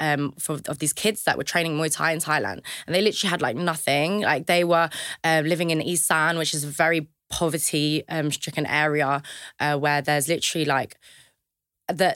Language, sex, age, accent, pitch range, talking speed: English, female, 20-39, British, 150-180 Hz, 190 wpm